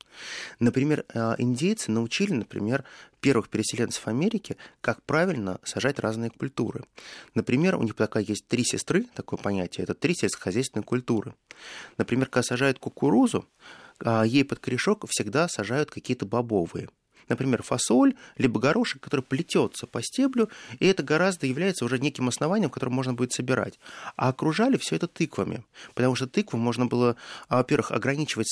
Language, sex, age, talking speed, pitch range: Russian, male, 20-39, 140 wpm, 110-145 Hz